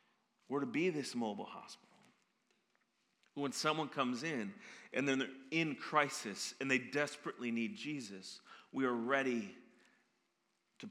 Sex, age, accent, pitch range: male, 40-59, American, 125-165 Hz